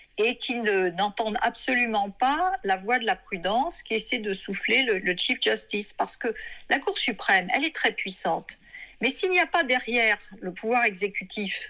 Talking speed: 190 wpm